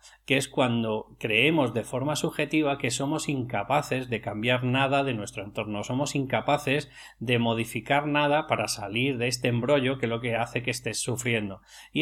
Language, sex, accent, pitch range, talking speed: Spanish, male, Spanish, 115-140 Hz, 175 wpm